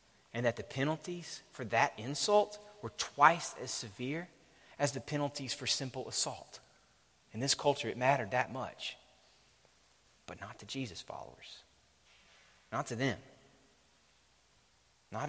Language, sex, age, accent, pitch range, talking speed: English, male, 30-49, American, 100-135 Hz, 130 wpm